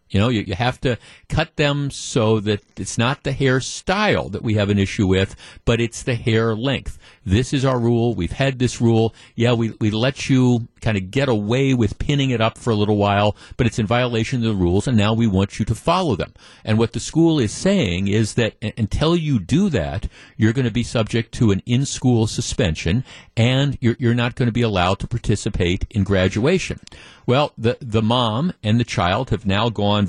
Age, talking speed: 50-69, 215 wpm